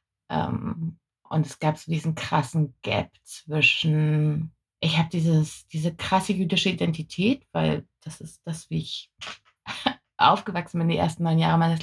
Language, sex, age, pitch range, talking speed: German, female, 20-39, 150-170 Hz, 145 wpm